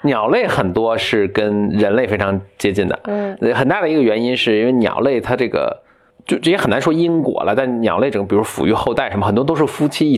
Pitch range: 105-155 Hz